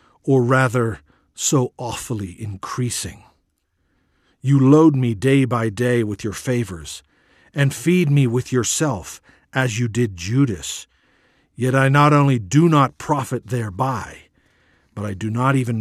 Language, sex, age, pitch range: English, male, 50-69, 100-135 Hz